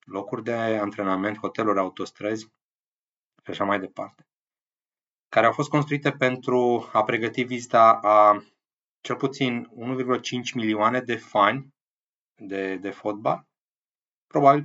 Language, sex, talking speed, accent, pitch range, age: Romanian, male, 115 wpm, native, 100-125 Hz, 20-39